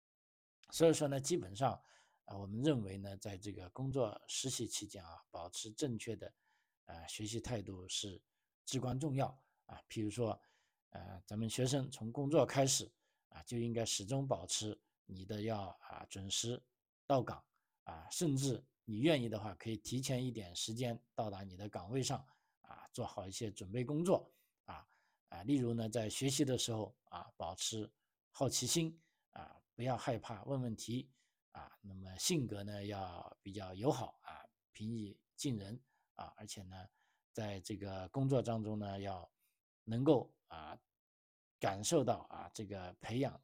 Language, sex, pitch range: Chinese, male, 100-130 Hz